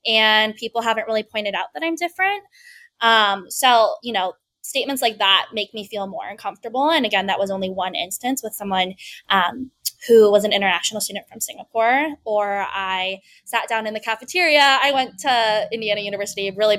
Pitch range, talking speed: 200-275 Hz, 180 wpm